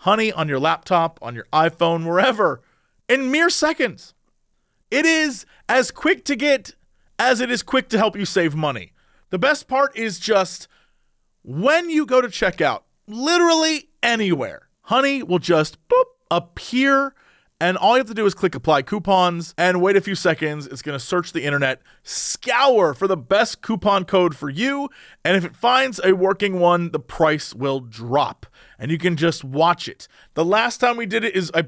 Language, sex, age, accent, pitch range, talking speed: English, male, 30-49, American, 155-220 Hz, 185 wpm